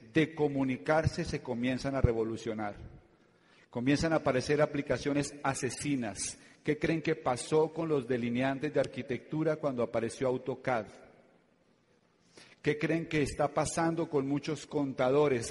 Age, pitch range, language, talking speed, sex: 40-59, 130-165 Hz, Spanish, 120 wpm, male